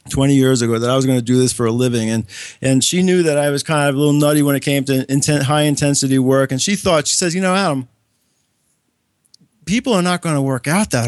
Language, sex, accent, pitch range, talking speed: English, male, American, 145-205 Hz, 255 wpm